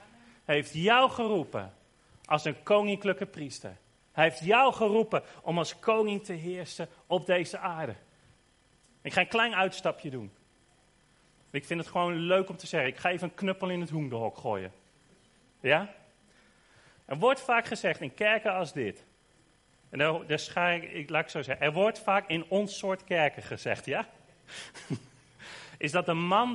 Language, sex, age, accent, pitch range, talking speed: Dutch, male, 40-59, Dutch, 145-200 Hz, 165 wpm